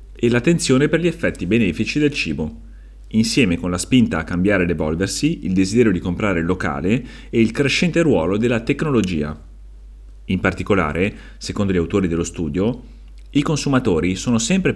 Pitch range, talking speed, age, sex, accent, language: 85-120 Hz, 150 wpm, 30-49, male, native, Italian